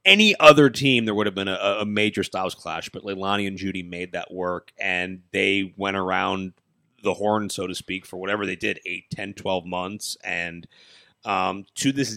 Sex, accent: male, American